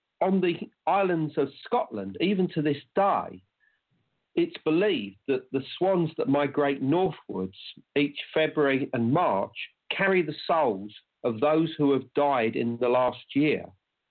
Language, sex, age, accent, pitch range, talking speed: English, male, 50-69, British, 120-160 Hz, 140 wpm